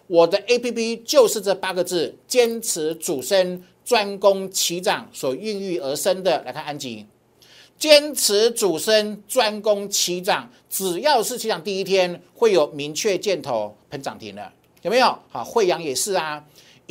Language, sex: Chinese, male